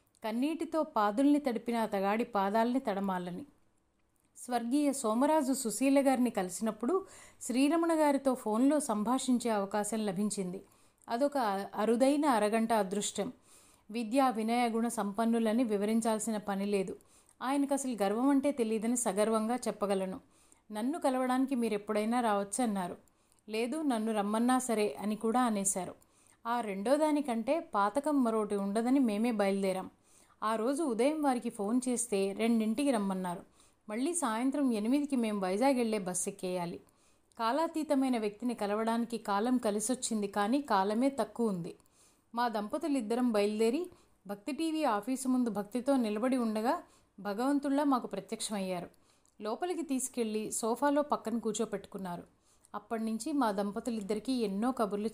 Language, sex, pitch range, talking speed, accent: Telugu, female, 210-260 Hz, 110 wpm, native